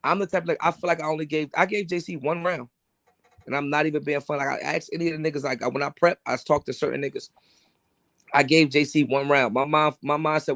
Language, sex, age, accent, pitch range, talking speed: English, male, 20-39, American, 130-150 Hz, 265 wpm